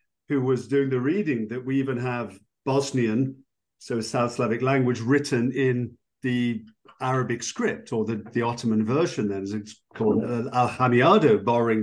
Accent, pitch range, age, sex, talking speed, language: British, 110-135 Hz, 50-69, male, 155 wpm, English